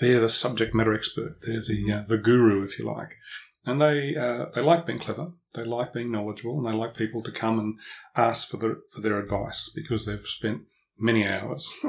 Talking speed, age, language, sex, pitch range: 210 wpm, 30-49, English, male, 105-135 Hz